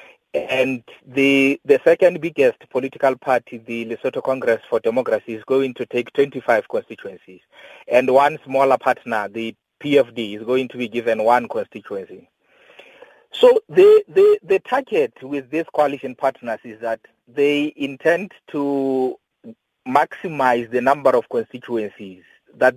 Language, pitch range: English, 120-155 Hz